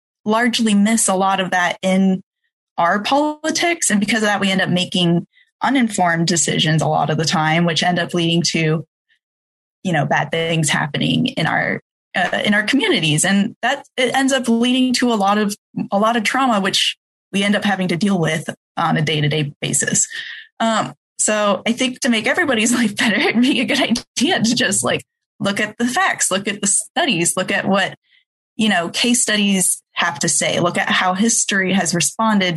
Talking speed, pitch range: 200 wpm, 175-240 Hz